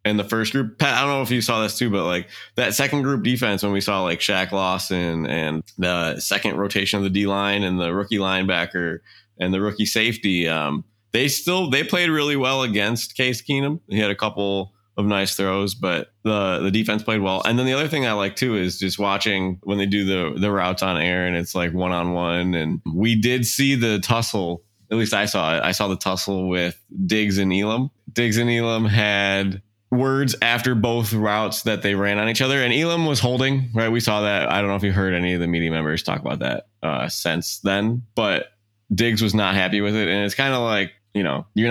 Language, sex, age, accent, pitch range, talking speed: English, male, 20-39, American, 95-115 Hz, 235 wpm